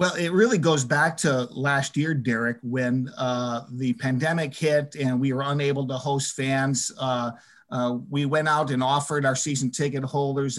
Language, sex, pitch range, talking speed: English, male, 130-155 Hz, 180 wpm